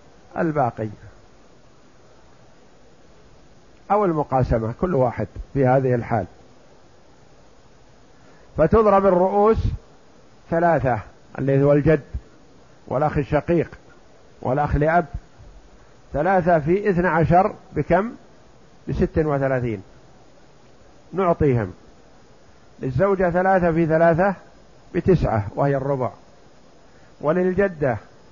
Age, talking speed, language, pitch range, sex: 50-69, 70 wpm, Arabic, 140-185 Hz, male